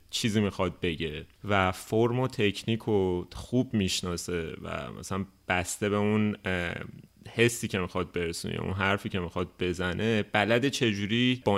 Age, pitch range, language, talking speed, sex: 30-49, 90-110 Hz, Persian, 145 wpm, male